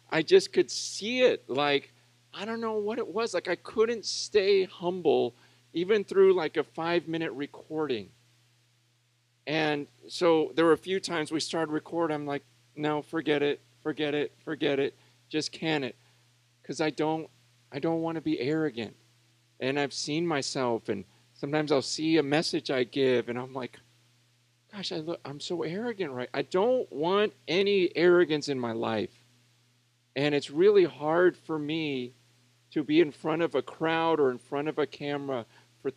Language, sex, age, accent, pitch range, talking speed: English, male, 40-59, American, 120-160 Hz, 175 wpm